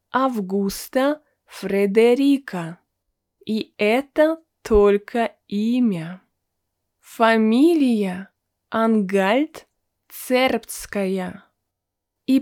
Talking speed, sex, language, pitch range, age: 50 wpm, female, Russian, 185-245 Hz, 20-39